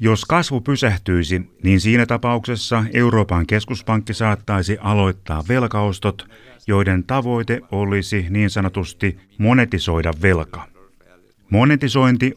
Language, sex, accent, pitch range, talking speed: Finnish, male, native, 95-115 Hz, 90 wpm